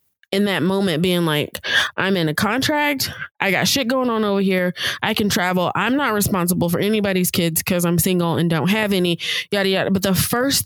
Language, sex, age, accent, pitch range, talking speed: English, female, 20-39, American, 175-215 Hz, 210 wpm